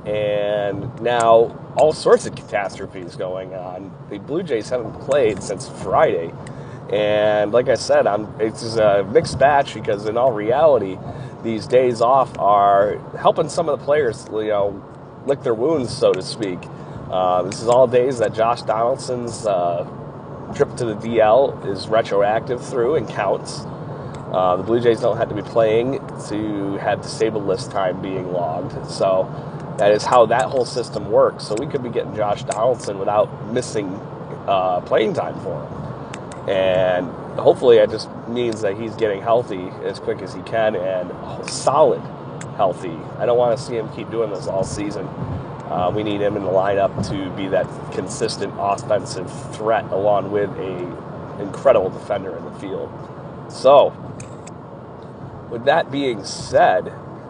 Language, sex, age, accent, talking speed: English, male, 30-49, American, 160 wpm